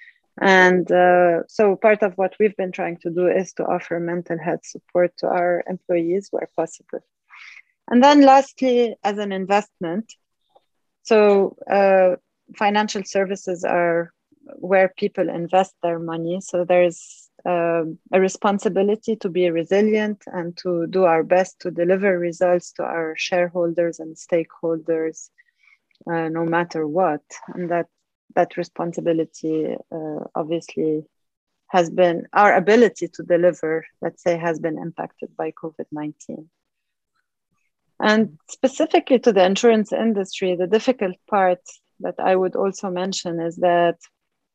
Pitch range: 170-205 Hz